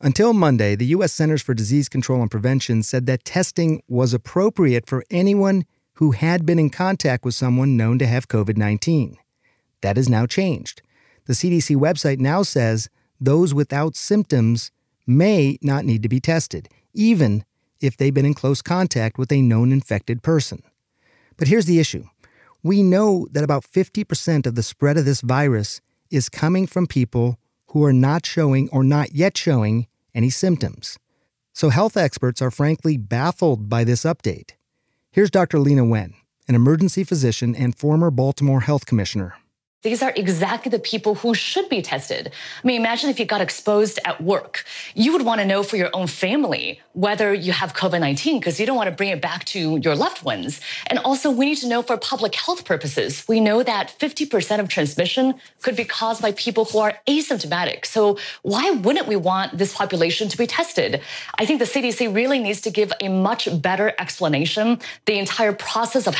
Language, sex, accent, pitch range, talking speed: English, male, American, 130-210 Hz, 180 wpm